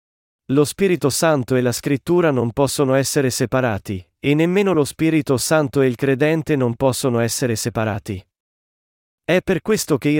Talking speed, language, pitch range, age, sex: 160 wpm, Italian, 120-160 Hz, 30-49, male